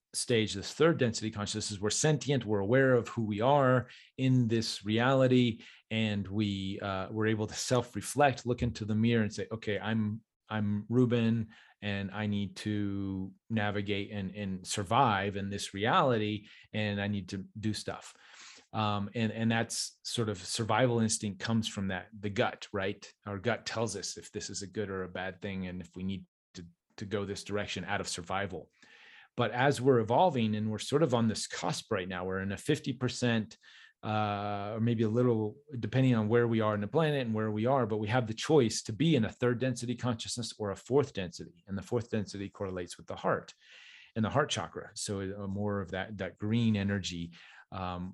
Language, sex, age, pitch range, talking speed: English, male, 30-49, 100-120 Hz, 200 wpm